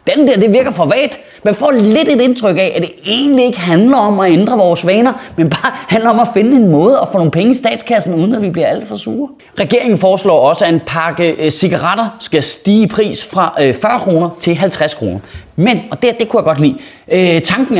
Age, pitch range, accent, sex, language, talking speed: 20-39, 165-230 Hz, native, male, Danish, 230 wpm